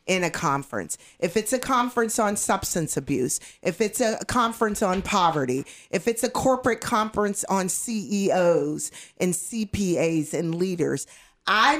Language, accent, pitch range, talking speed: English, American, 170-230 Hz, 140 wpm